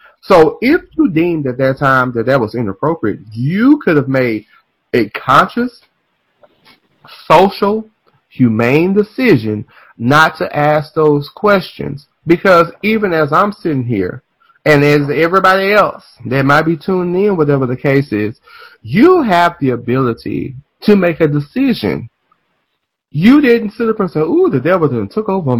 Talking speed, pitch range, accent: 150 wpm, 120-185 Hz, American